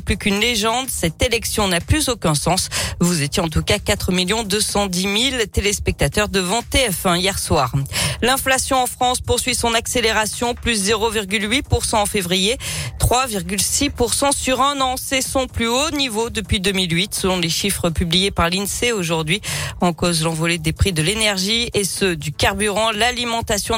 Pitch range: 175-230 Hz